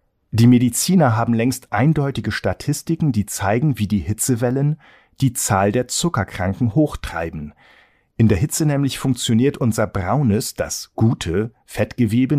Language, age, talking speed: German, 50-69, 125 wpm